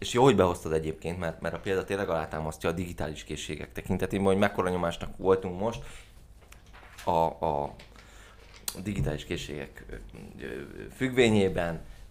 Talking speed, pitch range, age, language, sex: 125 wpm, 80-100 Hz, 20-39, Hungarian, male